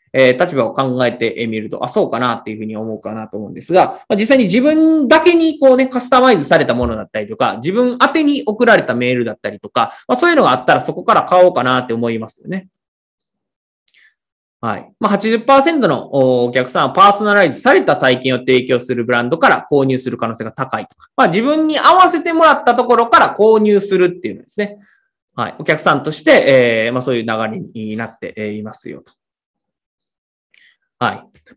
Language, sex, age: Japanese, male, 20-39